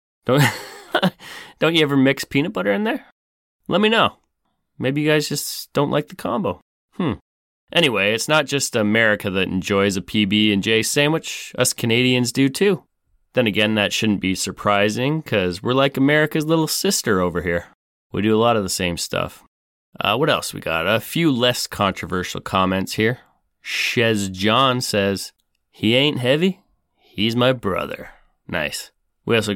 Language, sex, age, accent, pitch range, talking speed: English, male, 30-49, American, 100-140 Hz, 160 wpm